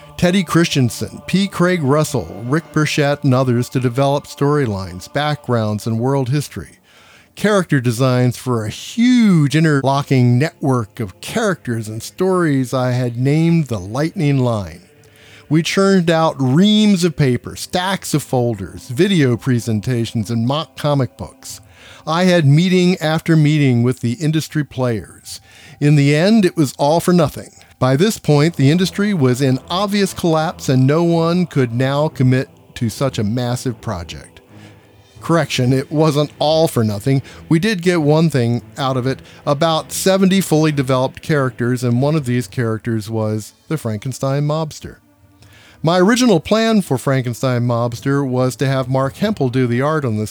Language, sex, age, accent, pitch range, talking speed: English, male, 50-69, American, 120-155 Hz, 155 wpm